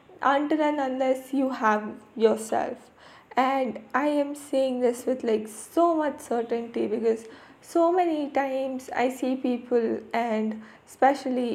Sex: female